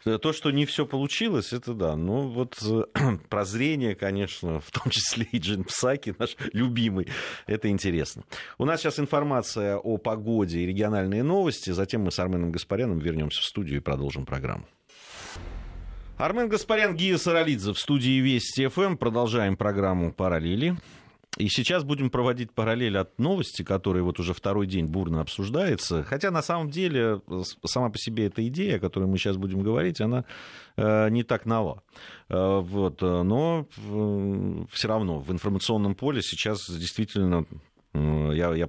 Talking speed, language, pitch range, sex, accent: 145 wpm, Russian, 90-125 Hz, male, native